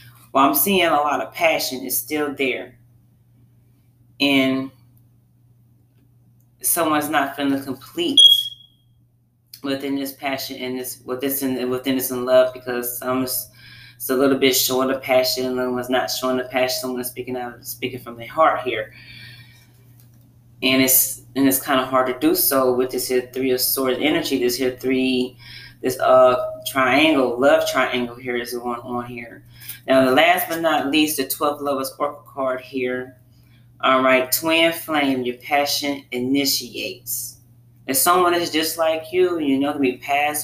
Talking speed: 165 wpm